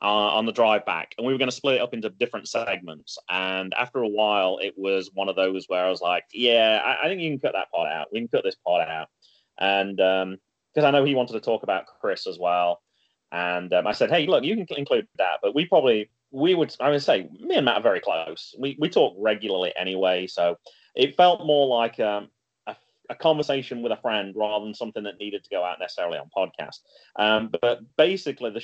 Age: 30-49